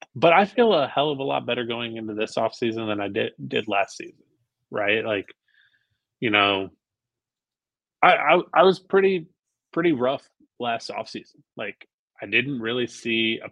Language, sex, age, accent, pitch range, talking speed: English, male, 20-39, American, 105-120 Hz, 180 wpm